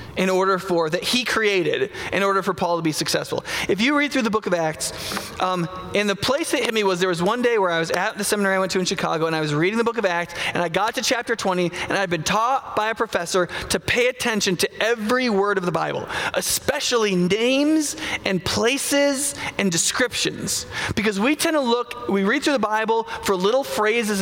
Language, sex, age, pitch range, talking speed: English, male, 20-39, 175-230 Hz, 225 wpm